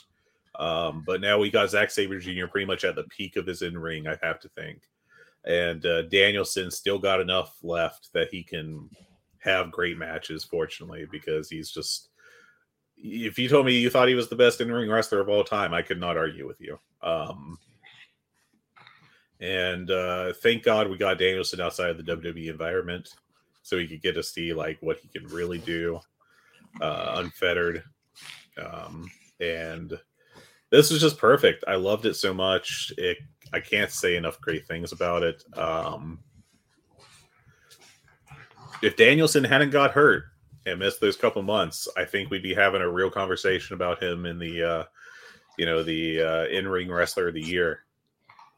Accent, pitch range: American, 85-140 Hz